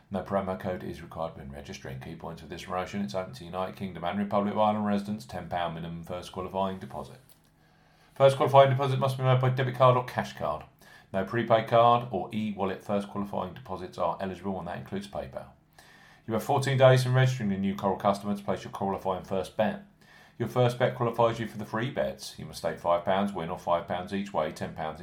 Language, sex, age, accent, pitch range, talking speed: English, male, 40-59, British, 90-115 Hz, 210 wpm